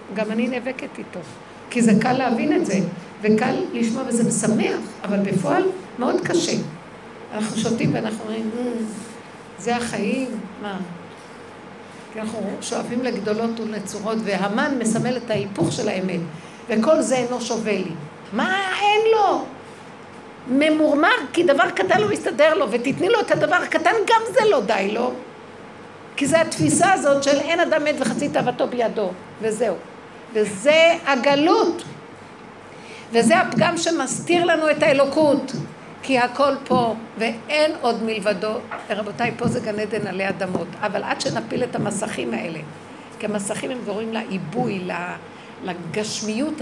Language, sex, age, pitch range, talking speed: Hebrew, female, 50-69, 215-265 Hz, 135 wpm